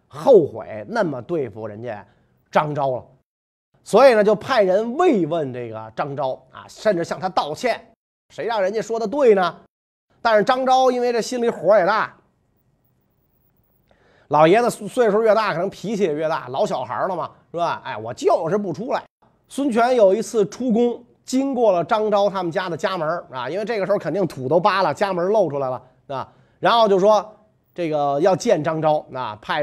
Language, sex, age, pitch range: Chinese, male, 30-49, 145-215 Hz